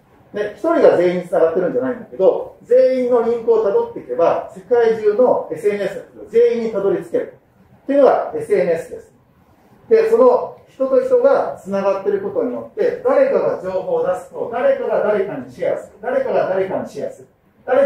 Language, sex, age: Japanese, male, 40-59